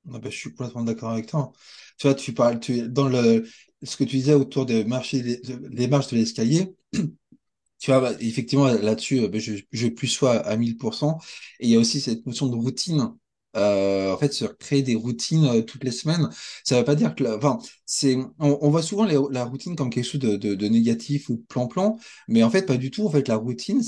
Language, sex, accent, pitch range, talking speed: French, male, French, 115-145 Hz, 235 wpm